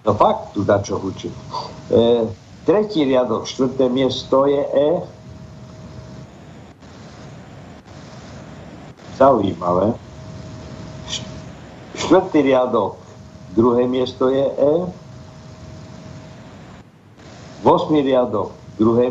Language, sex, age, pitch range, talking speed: Slovak, male, 60-79, 115-145 Hz, 70 wpm